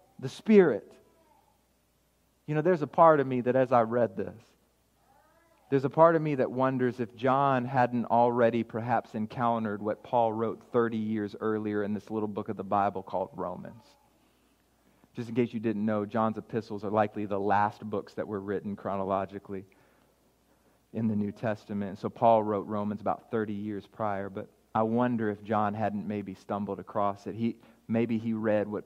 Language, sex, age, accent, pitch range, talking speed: English, male, 40-59, American, 100-120 Hz, 180 wpm